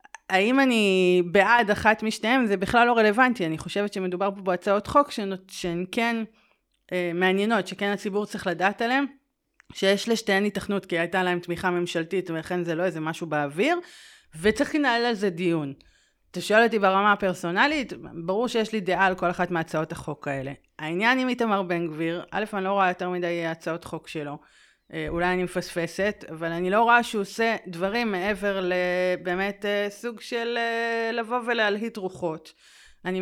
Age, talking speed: 30-49, 165 wpm